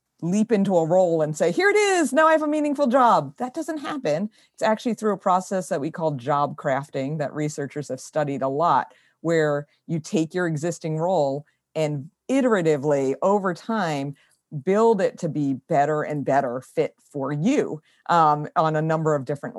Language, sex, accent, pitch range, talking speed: English, female, American, 145-185 Hz, 185 wpm